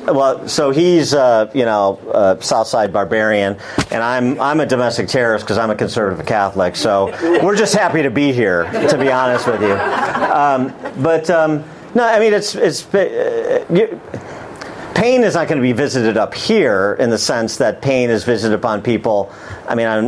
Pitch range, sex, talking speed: 115-165 Hz, male, 190 wpm